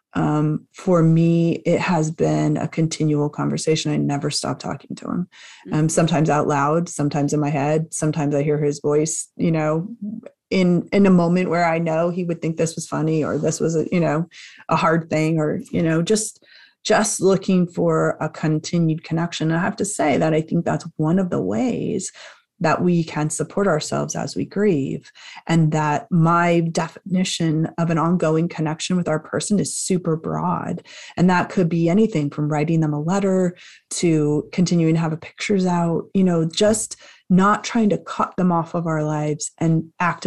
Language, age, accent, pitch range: English, 30-49, American, 155-180 Hz